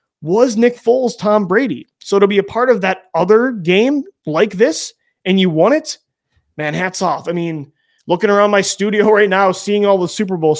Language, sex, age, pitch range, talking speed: English, male, 20-39, 155-205 Hz, 205 wpm